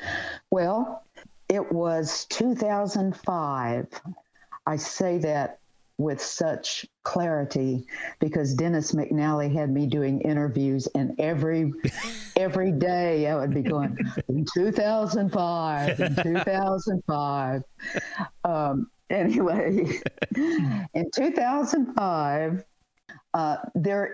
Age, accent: 60-79, American